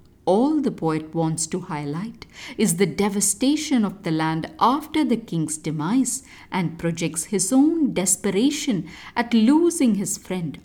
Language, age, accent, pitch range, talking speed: English, 50-69, Indian, 160-240 Hz, 140 wpm